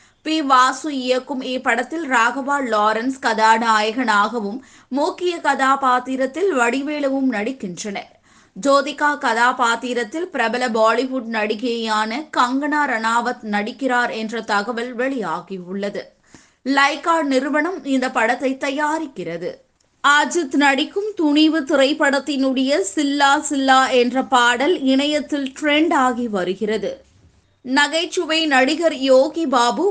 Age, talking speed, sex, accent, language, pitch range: 20-39, 85 wpm, female, native, Tamil, 240-310 Hz